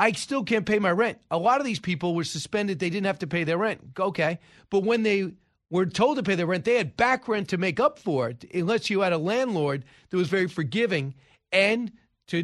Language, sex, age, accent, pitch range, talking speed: English, male, 40-59, American, 135-195 Hz, 240 wpm